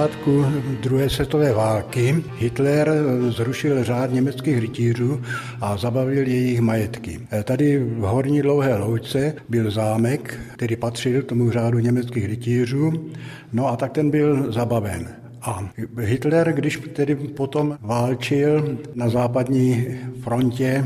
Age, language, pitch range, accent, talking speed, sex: 60-79, Czech, 120-145 Hz, native, 120 wpm, male